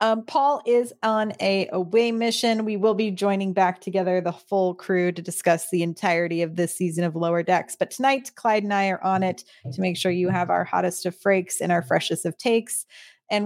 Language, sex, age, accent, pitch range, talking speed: English, female, 30-49, American, 185-245 Hz, 220 wpm